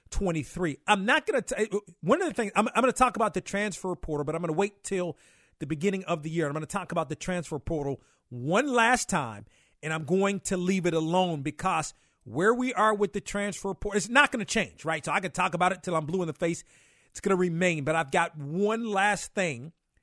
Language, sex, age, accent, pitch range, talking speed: English, male, 40-59, American, 155-190 Hz, 250 wpm